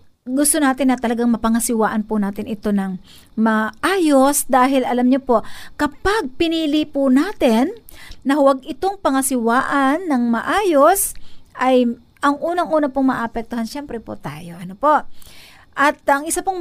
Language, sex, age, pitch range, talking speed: Filipino, female, 50-69, 215-285 Hz, 135 wpm